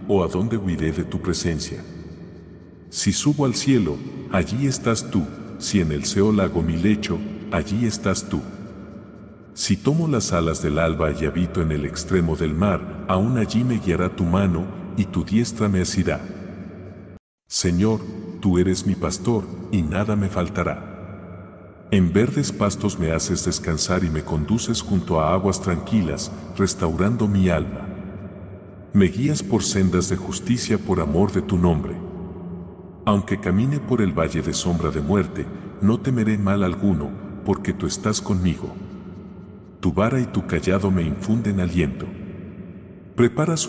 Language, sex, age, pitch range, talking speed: English, male, 50-69, 90-105 Hz, 150 wpm